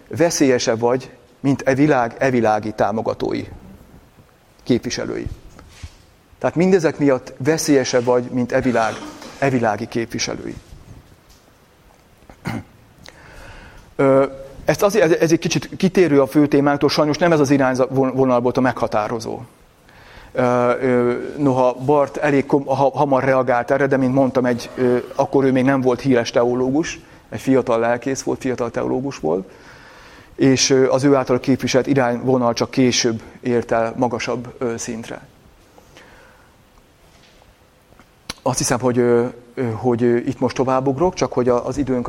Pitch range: 120-140 Hz